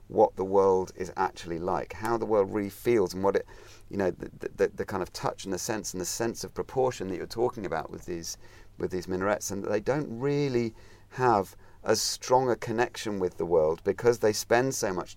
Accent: British